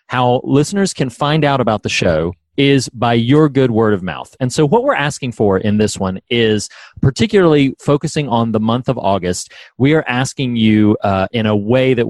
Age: 30-49